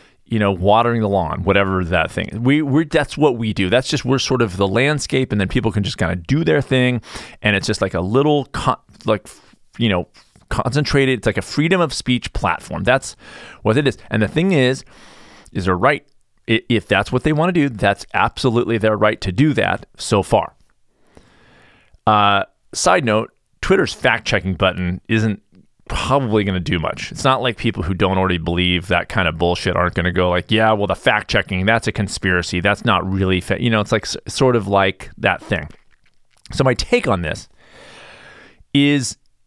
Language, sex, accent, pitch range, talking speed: English, male, American, 95-130 Hz, 195 wpm